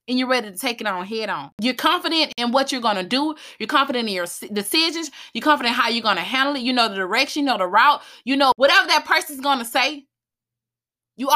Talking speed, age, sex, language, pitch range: 250 wpm, 20-39, female, English, 210-290 Hz